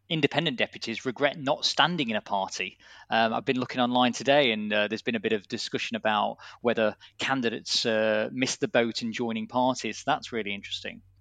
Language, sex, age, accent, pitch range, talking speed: English, male, 20-39, British, 120-145 Hz, 185 wpm